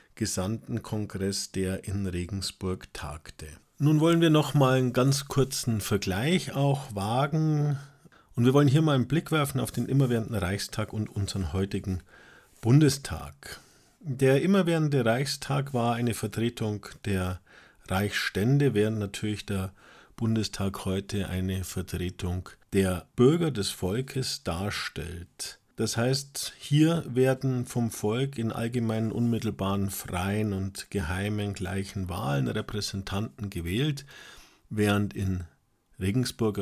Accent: German